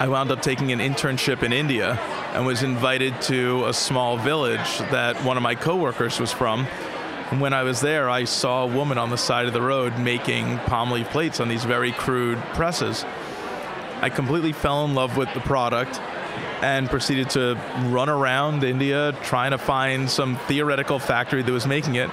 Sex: male